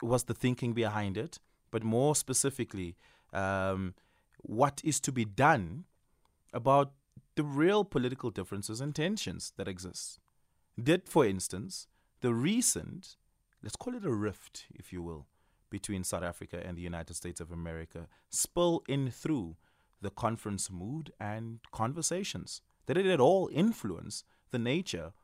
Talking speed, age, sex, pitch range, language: 145 wpm, 30-49, male, 90-120 Hz, English